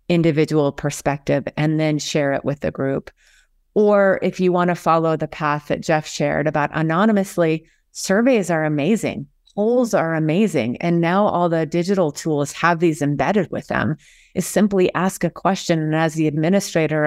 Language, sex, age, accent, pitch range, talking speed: English, female, 30-49, American, 155-185 Hz, 170 wpm